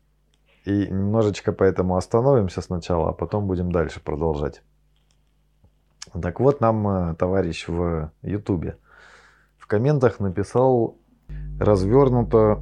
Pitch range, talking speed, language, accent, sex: 90-125 Hz, 95 wpm, Russian, native, male